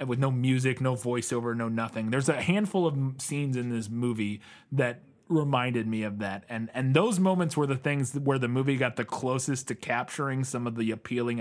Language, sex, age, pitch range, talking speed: English, male, 30-49, 125-165 Hz, 205 wpm